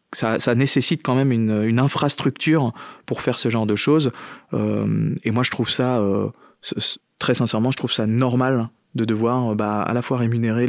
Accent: French